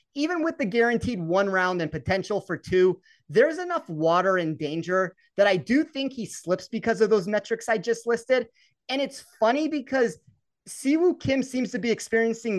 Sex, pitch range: male, 195-255 Hz